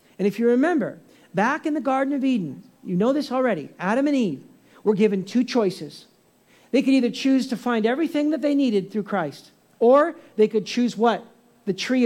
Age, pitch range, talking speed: 50-69, 210-285 Hz, 200 wpm